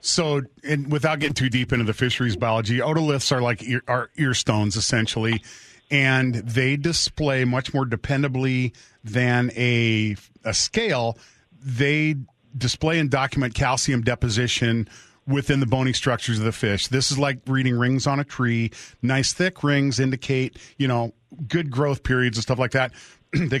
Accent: American